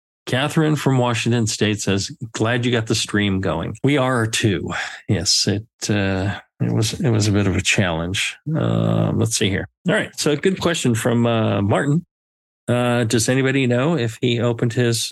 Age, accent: 40-59, American